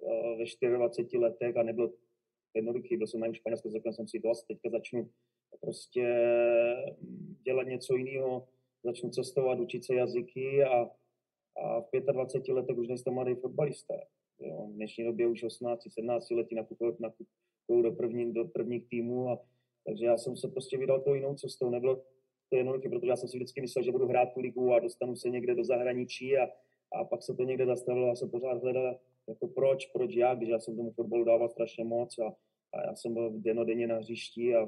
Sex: male